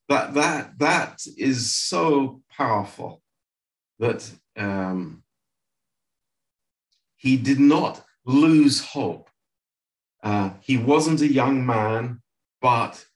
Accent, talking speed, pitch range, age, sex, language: British, 85 wpm, 110-140 Hz, 50-69, male, Romanian